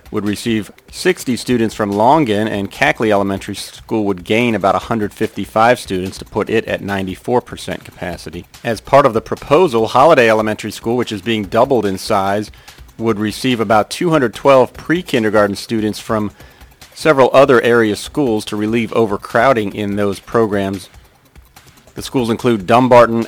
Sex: male